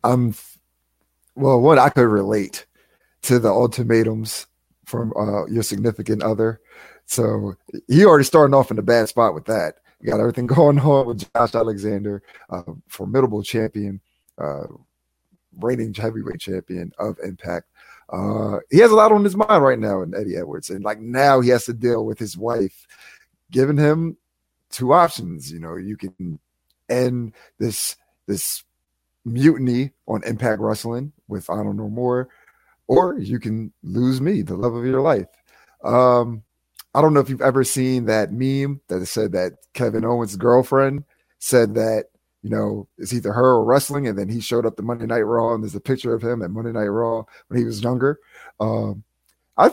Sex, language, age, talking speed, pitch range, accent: male, English, 30-49, 175 wpm, 105-125 Hz, American